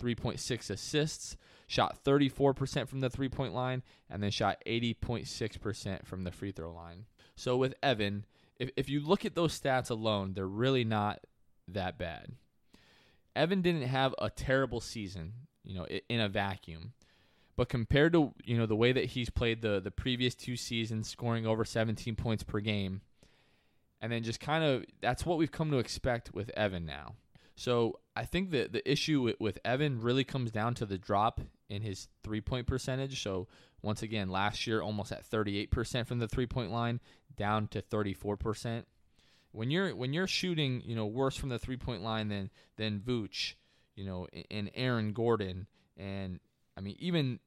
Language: English